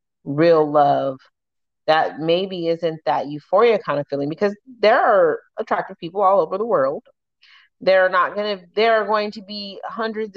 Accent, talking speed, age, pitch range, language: American, 160 wpm, 30-49, 165-220 Hz, English